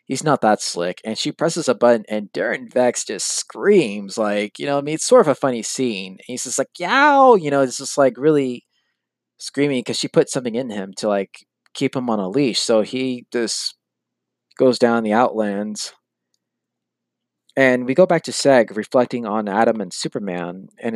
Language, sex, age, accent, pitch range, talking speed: English, male, 20-39, American, 110-135 Hz, 200 wpm